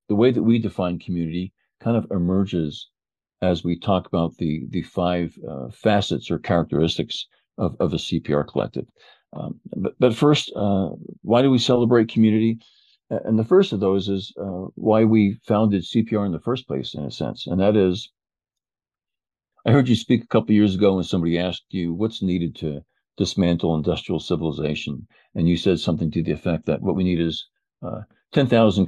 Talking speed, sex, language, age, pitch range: 185 wpm, male, English, 50-69, 85-110 Hz